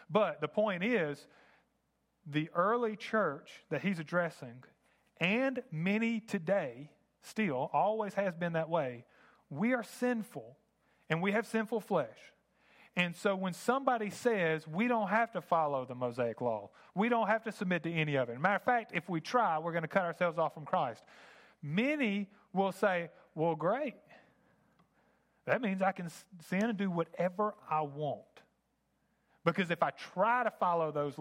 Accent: American